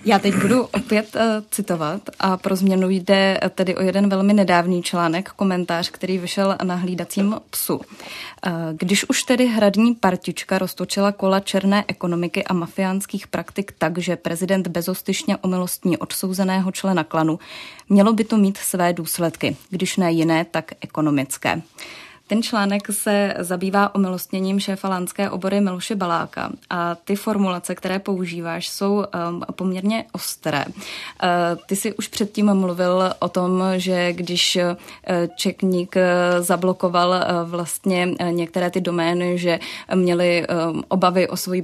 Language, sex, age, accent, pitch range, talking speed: Czech, female, 20-39, native, 175-200 Hz, 135 wpm